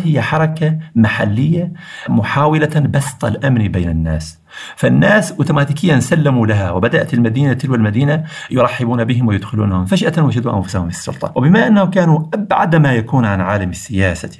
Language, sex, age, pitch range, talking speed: Arabic, male, 50-69, 95-140 Hz, 140 wpm